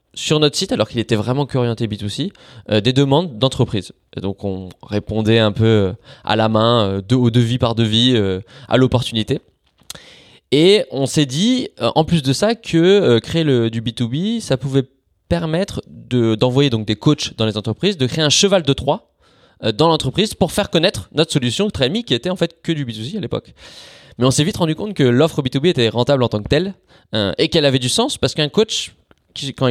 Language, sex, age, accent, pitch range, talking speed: English, male, 20-39, French, 110-155 Hz, 210 wpm